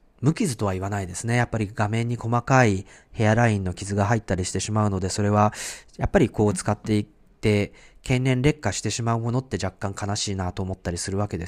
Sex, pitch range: male, 100-135 Hz